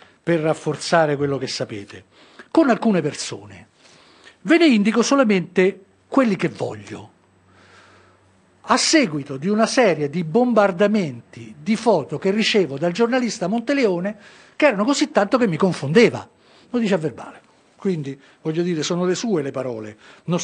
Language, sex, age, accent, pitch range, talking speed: Italian, male, 50-69, native, 135-210 Hz, 145 wpm